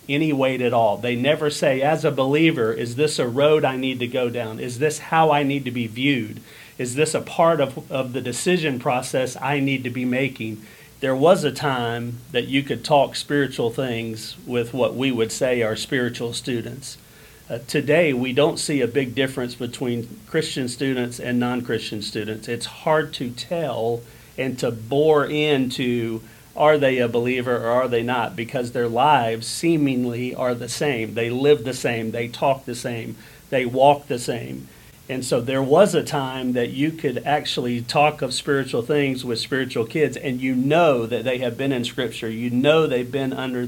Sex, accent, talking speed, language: male, American, 190 wpm, English